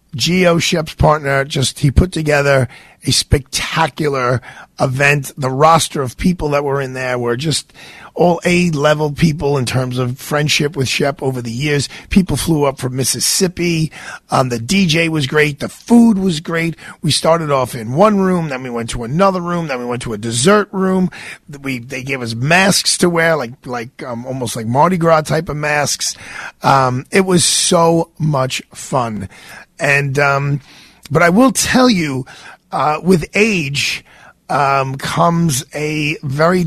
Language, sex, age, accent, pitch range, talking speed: English, male, 50-69, American, 135-170 Hz, 165 wpm